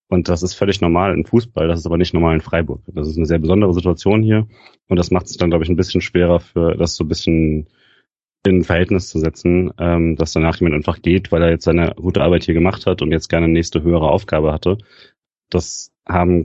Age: 30-49